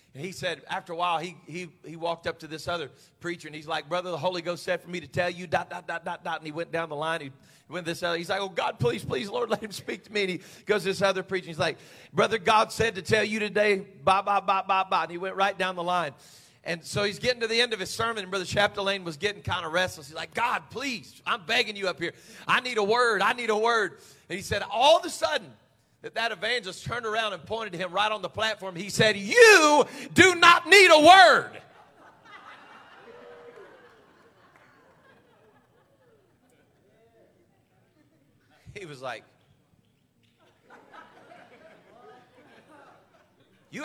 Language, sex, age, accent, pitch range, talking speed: English, male, 40-59, American, 175-225 Hz, 205 wpm